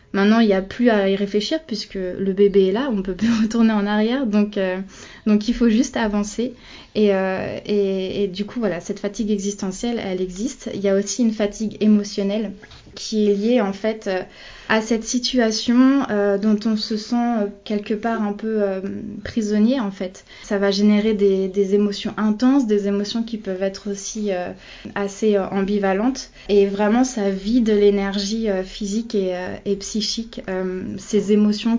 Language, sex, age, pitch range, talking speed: French, female, 20-39, 200-225 Hz, 180 wpm